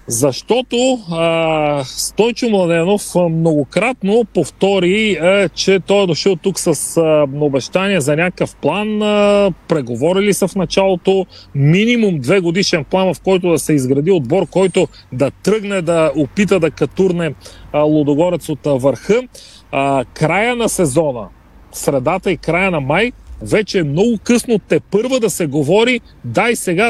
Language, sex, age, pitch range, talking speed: Bulgarian, male, 40-59, 155-205 Hz, 145 wpm